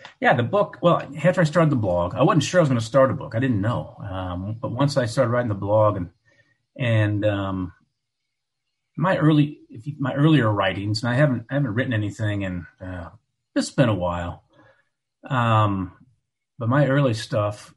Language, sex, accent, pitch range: English, male, American, 100-135 Hz